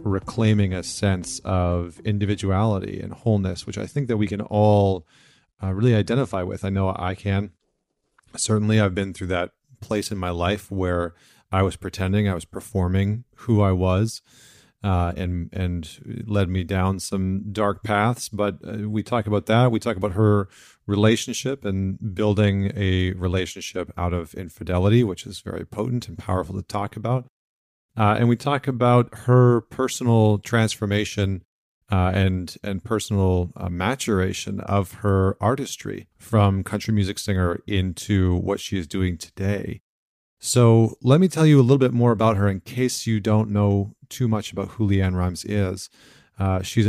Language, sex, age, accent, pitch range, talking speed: English, male, 40-59, American, 95-115 Hz, 165 wpm